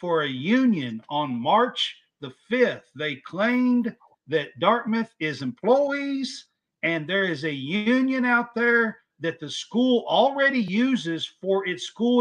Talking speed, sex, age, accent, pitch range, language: 140 wpm, male, 50-69, American, 180-245 Hz, English